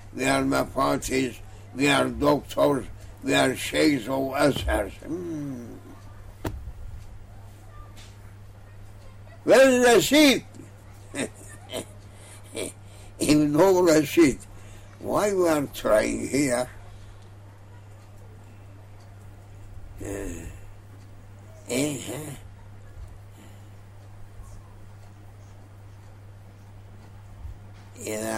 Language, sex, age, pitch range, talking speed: English, male, 60-79, 100-125 Hz, 55 wpm